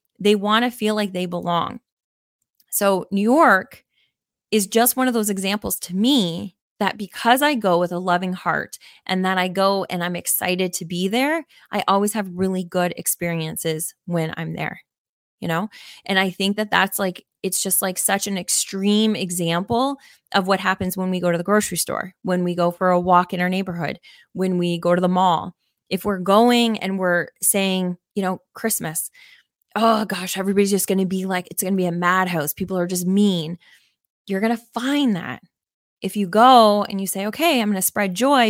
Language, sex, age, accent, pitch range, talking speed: English, female, 20-39, American, 180-215 Hz, 205 wpm